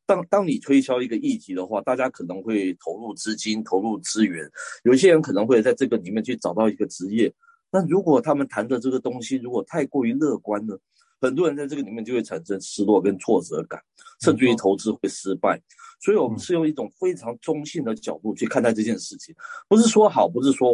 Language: Chinese